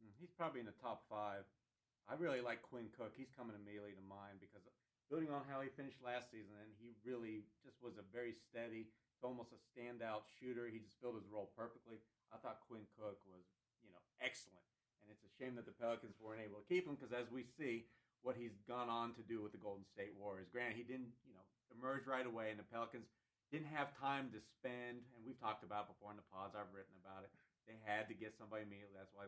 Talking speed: 230 wpm